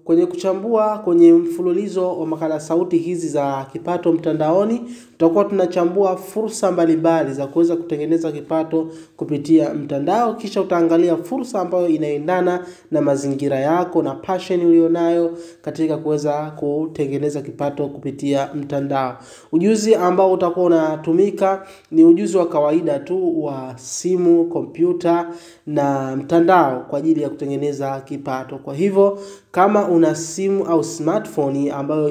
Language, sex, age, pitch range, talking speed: Swahili, male, 30-49, 145-185 Hz, 120 wpm